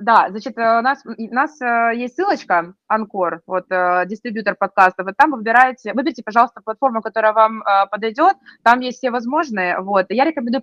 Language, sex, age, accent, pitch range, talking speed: Russian, female, 20-39, native, 195-250 Hz, 165 wpm